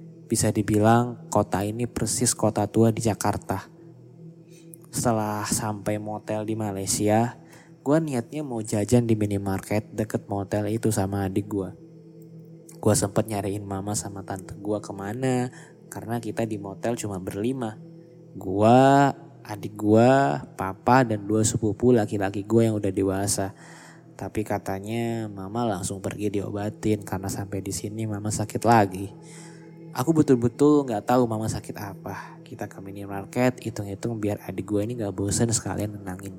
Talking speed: 140 wpm